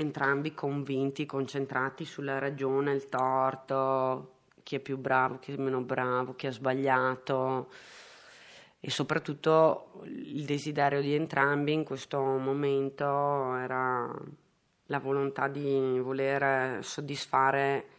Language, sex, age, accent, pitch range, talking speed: Italian, female, 30-49, native, 130-150 Hz, 110 wpm